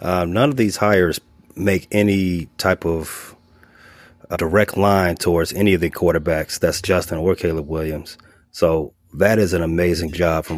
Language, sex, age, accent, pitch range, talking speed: English, male, 30-49, American, 85-95 Hz, 165 wpm